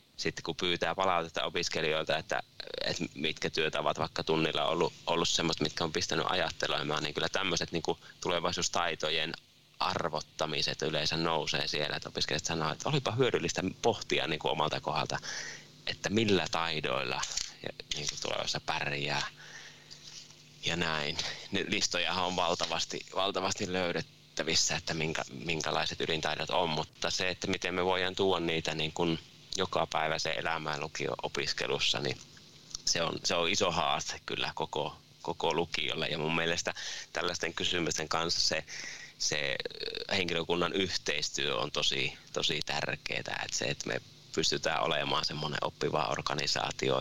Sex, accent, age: male, native, 20-39